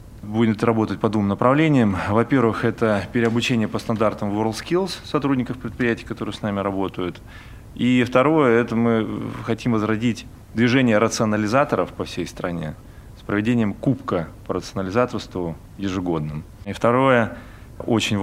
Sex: male